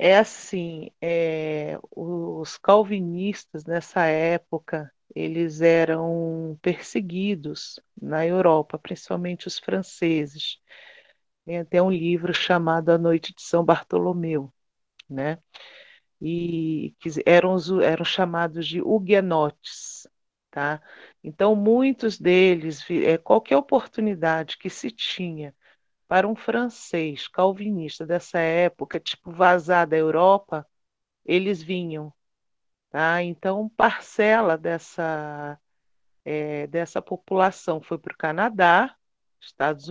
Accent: Brazilian